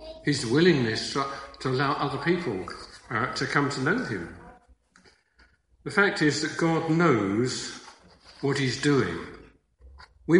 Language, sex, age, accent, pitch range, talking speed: English, male, 50-69, British, 150-205 Hz, 135 wpm